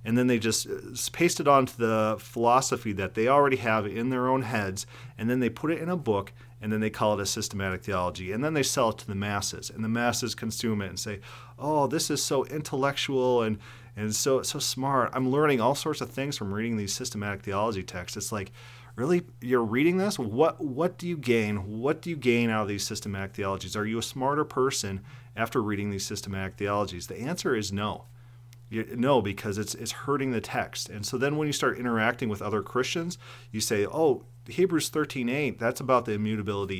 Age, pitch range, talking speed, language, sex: 40-59, 105-130 Hz, 215 wpm, English, male